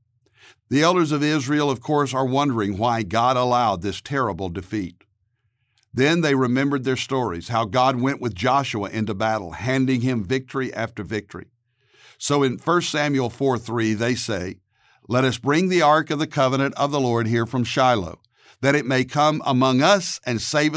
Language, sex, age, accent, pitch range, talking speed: English, male, 60-79, American, 110-135 Hz, 175 wpm